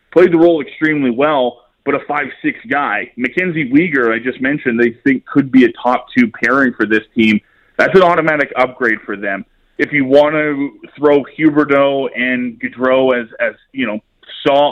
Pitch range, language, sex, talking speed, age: 120-145 Hz, English, male, 175 wpm, 20-39